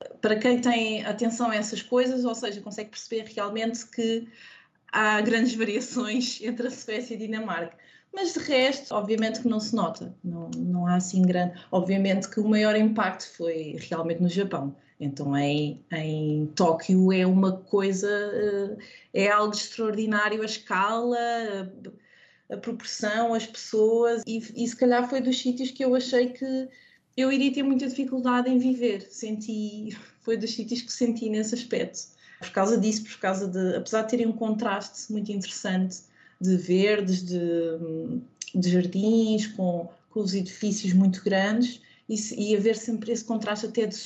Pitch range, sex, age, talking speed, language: 190-235 Hz, female, 20-39, 160 wpm, Portuguese